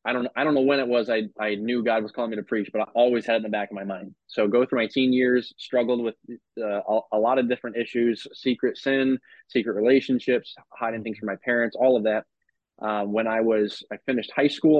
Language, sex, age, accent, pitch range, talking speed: English, male, 20-39, American, 105-120 Hz, 255 wpm